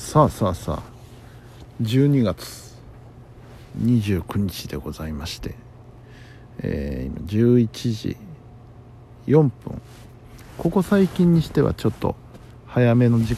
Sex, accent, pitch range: male, native, 100-120 Hz